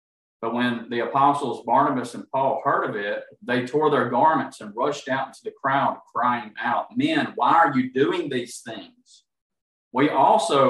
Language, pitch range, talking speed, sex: English, 120-150 Hz, 175 wpm, male